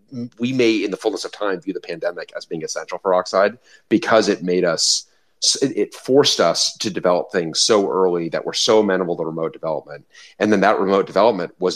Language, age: English, 30-49